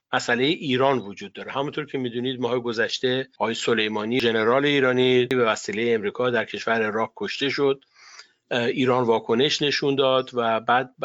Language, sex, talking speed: Persian, male, 150 wpm